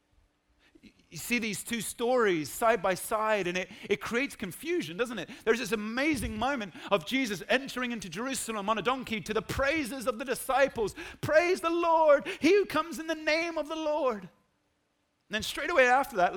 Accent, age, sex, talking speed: British, 40-59, male, 185 wpm